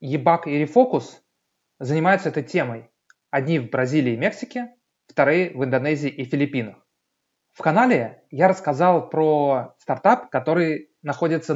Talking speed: 125 wpm